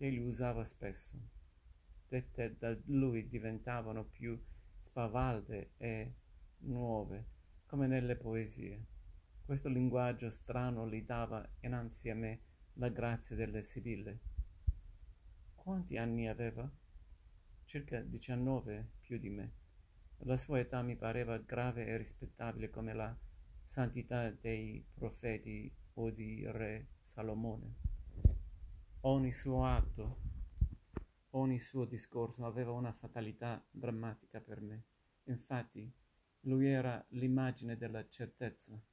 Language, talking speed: Italian, 105 wpm